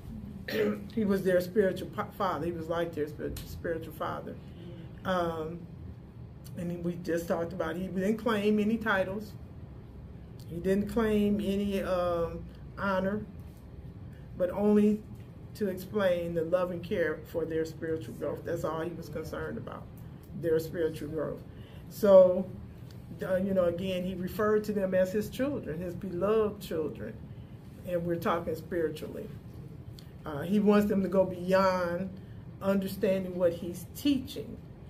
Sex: male